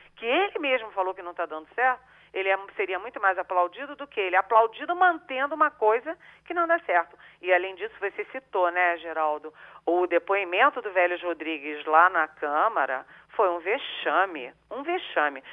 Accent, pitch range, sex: Brazilian, 195-330 Hz, female